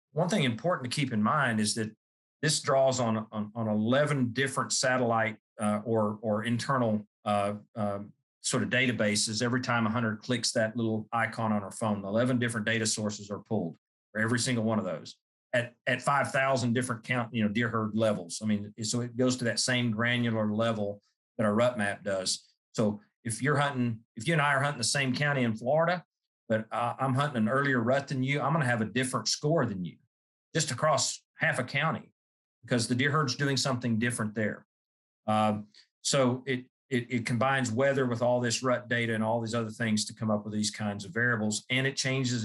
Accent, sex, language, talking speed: American, male, English, 210 wpm